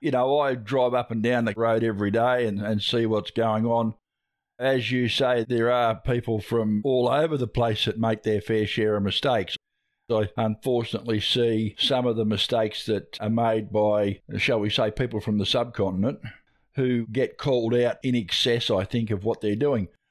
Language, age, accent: English, 50-69, Australian